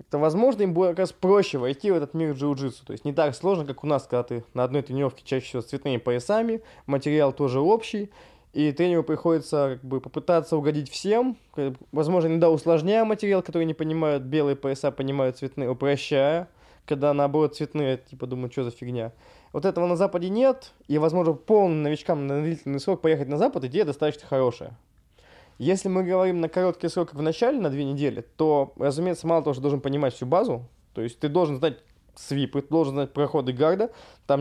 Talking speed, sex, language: 195 wpm, male, Russian